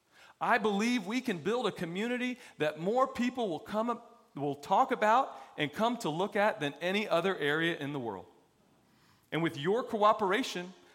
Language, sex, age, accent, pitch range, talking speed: English, male, 40-59, American, 145-205 Hz, 175 wpm